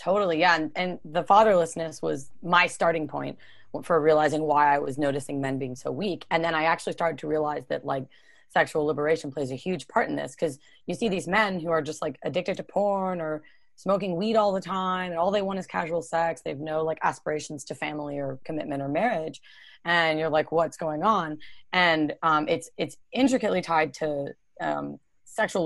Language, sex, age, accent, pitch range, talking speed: English, female, 30-49, American, 155-195 Hz, 205 wpm